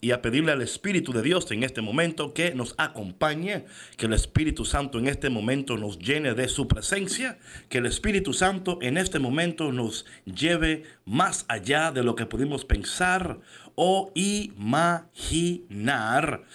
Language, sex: Spanish, male